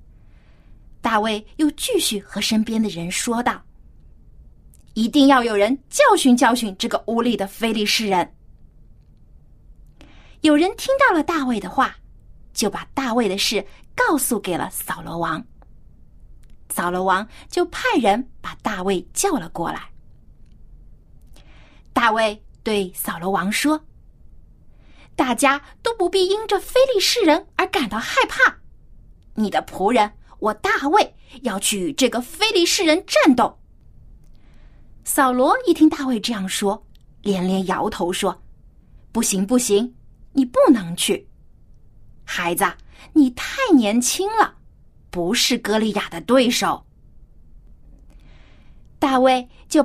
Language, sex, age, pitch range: Chinese, female, 30-49, 195-300 Hz